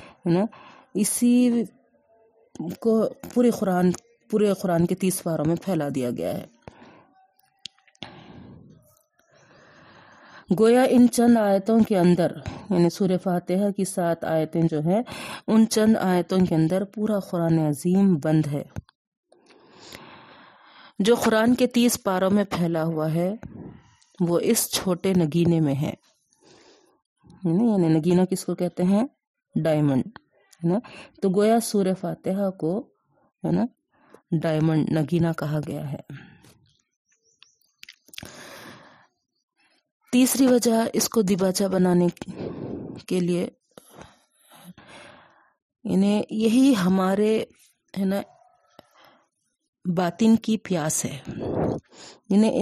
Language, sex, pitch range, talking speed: Urdu, female, 170-225 Hz, 105 wpm